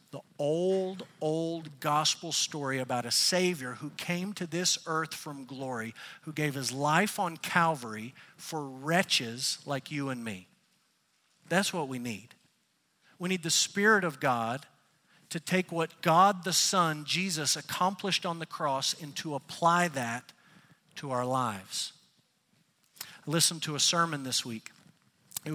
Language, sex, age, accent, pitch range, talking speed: English, male, 50-69, American, 140-180 Hz, 145 wpm